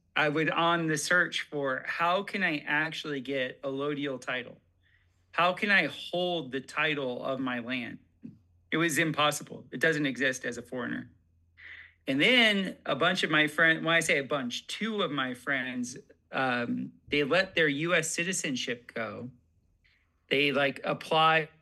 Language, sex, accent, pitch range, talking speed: English, male, American, 130-165 Hz, 160 wpm